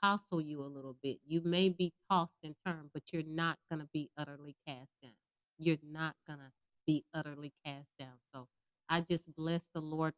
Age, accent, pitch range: 30-49, American, 160-225 Hz